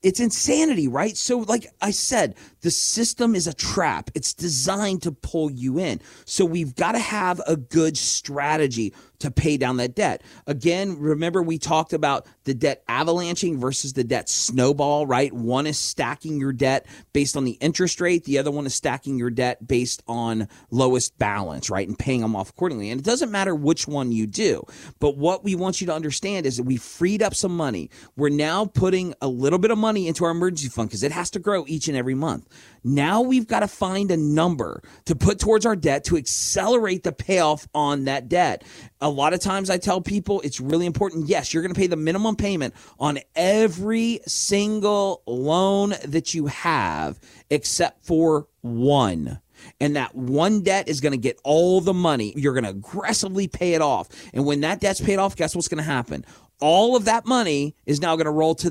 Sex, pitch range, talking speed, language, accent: male, 135-190 Hz, 205 wpm, English, American